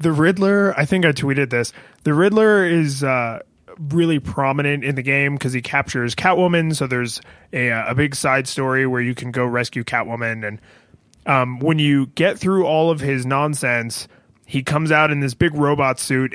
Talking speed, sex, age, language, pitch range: 185 wpm, male, 20-39, English, 130-170 Hz